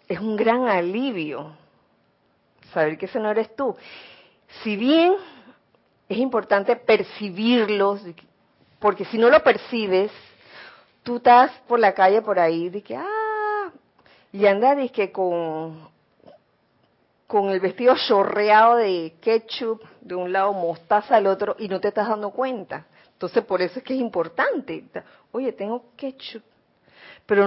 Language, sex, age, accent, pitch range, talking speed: Spanish, female, 40-59, American, 190-240 Hz, 140 wpm